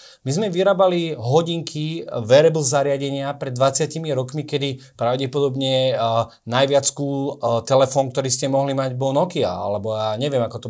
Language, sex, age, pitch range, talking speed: Slovak, male, 30-49, 130-160 Hz, 135 wpm